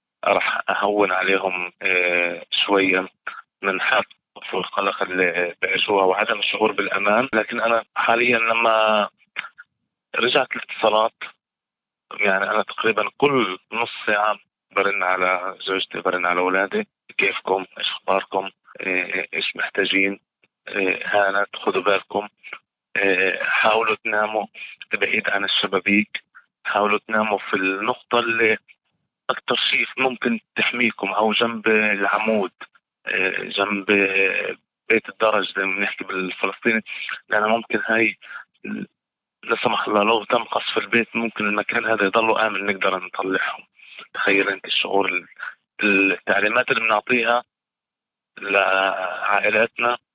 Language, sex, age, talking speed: Arabic, male, 30-49, 105 wpm